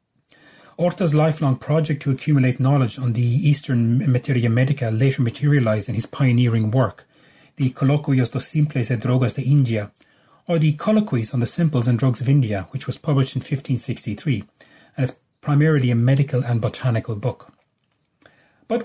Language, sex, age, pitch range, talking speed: English, male, 30-49, 125-145 Hz, 155 wpm